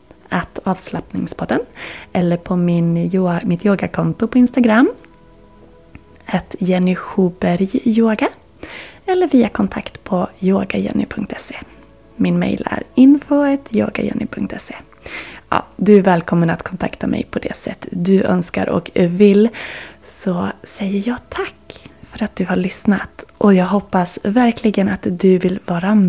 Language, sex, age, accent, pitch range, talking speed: Swedish, female, 20-39, native, 180-230 Hz, 115 wpm